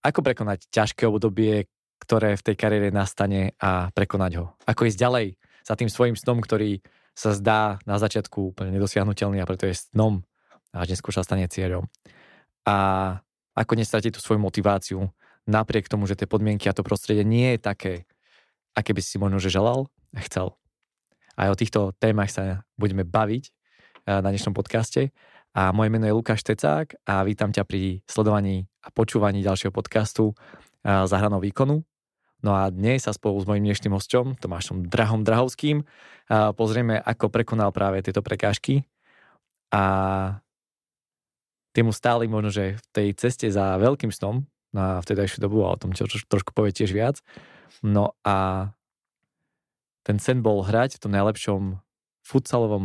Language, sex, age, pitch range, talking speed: Slovak, male, 20-39, 95-110 Hz, 160 wpm